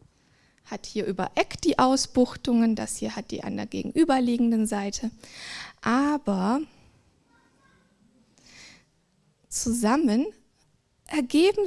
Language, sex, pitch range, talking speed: German, female, 225-285 Hz, 85 wpm